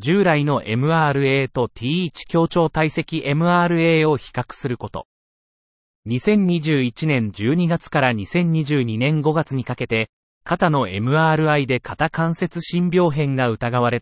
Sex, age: male, 30-49